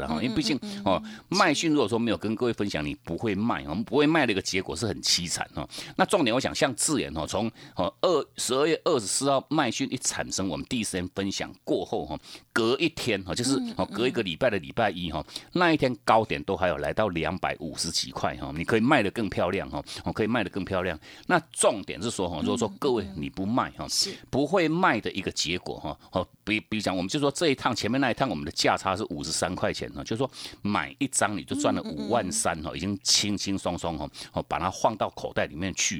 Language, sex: Chinese, male